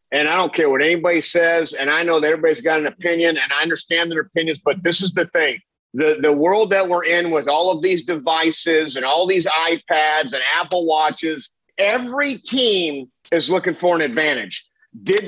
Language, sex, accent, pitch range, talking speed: English, male, American, 170-230 Hz, 200 wpm